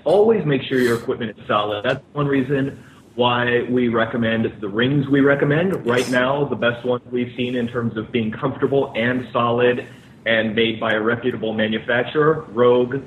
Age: 30-49